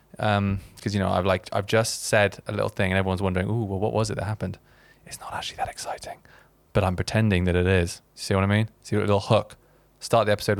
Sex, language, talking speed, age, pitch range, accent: male, English, 250 wpm, 20-39, 100-120 Hz, British